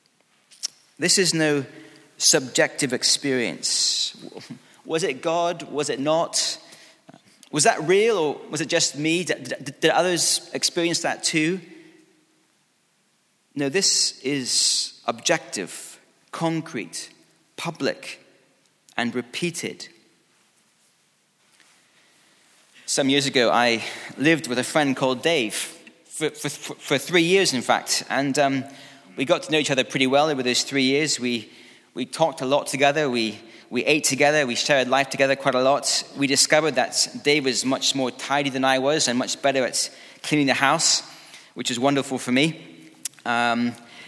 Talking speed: 145 wpm